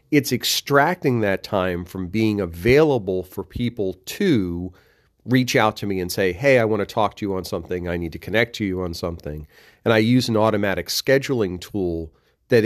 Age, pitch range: 40-59, 90-120 Hz